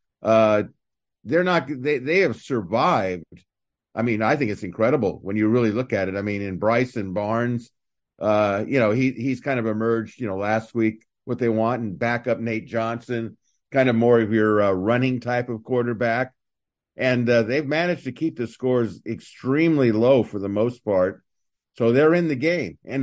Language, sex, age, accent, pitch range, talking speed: English, male, 50-69, American, 110-130 Hz, 195 wpm